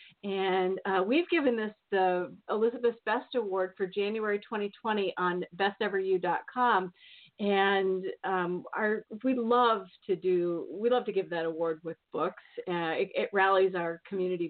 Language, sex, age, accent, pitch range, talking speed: English, female, 40-59, American, 180-230 Hz, 145 wpm